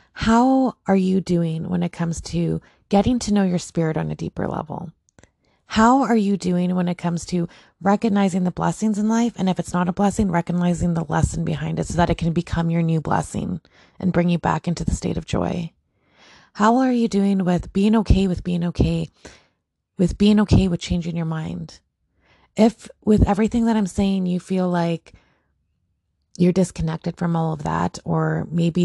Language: English